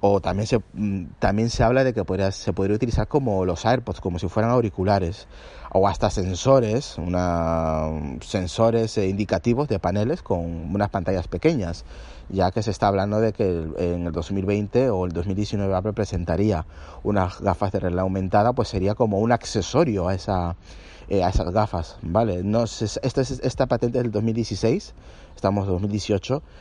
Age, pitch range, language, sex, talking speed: 30-49, 95-120 Hz, Spanish, male, 160 wpm